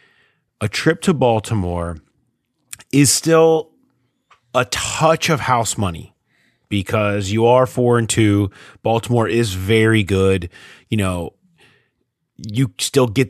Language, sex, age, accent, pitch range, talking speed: English, male, 30-49, American, 100-125 Hz, 115 wpm